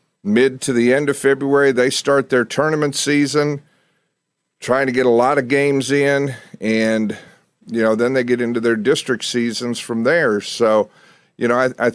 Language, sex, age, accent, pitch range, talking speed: English, male, 50-69, American, 115-140 Hz, 180 wpm